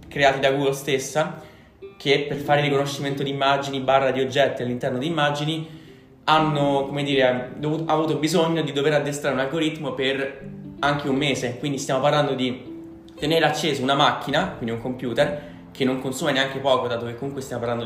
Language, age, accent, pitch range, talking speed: Italian, 20-39, native, 125-150 Hz, 180 wpm